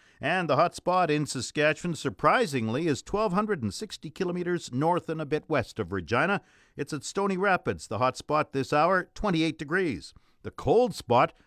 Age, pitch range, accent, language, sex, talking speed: 50-69, 120-155 Hz, American, English, male, 160 wpm